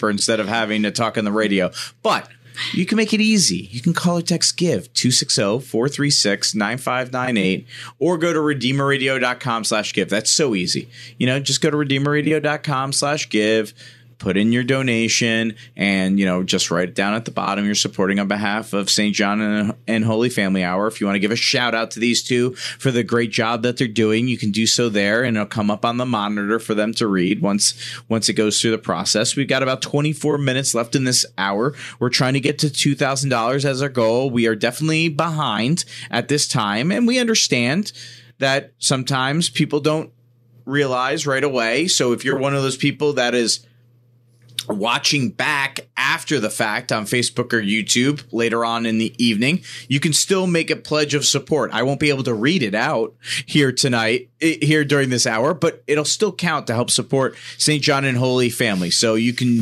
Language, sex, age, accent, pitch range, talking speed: English, male, 30-49, American, 115-145 Hz, 200 wpm